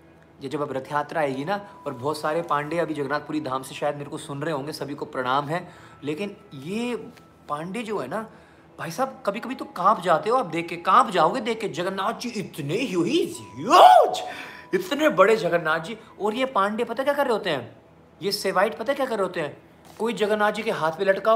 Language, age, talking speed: Hindi, 30-49, 215 wpm